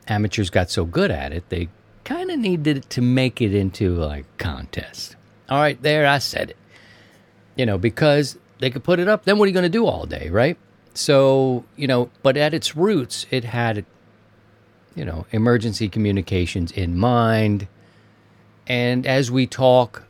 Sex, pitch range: male, 95-130 Hz